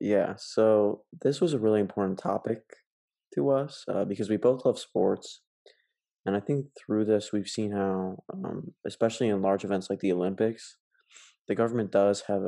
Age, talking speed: 20-39, 175 wpm